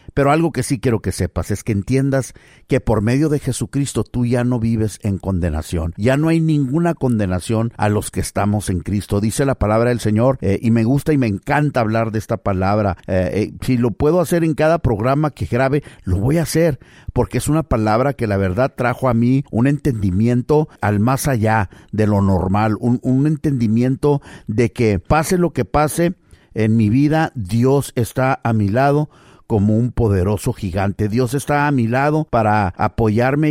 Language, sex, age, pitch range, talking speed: English, male, 50-69, 105-140 Hz, 195 wpm